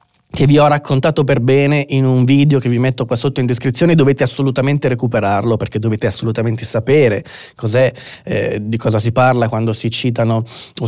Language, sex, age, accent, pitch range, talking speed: Italian, male, 20-39, native, 120-145 Hz, 180 wpm